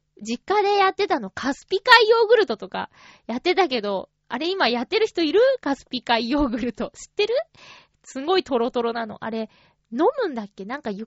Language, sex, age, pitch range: Japanese, female, 20-39, 215-340 Hz